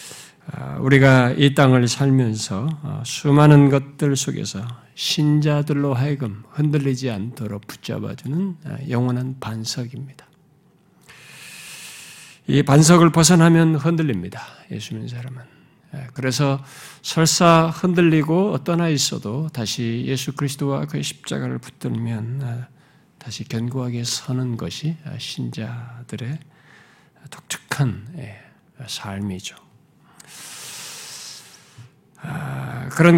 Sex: male